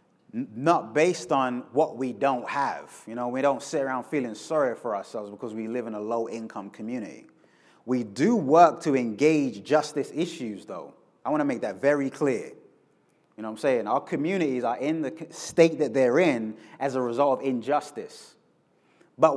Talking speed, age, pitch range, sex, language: 185 wpm, 30-49, 115-165 Hz, male, English